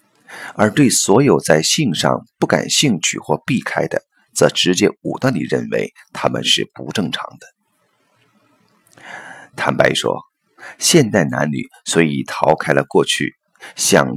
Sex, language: male, Chinese